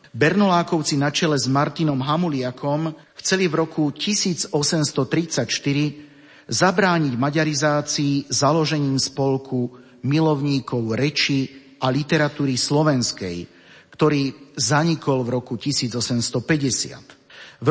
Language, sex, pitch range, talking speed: Slovak, male, 135-160 Hz, 85 wpm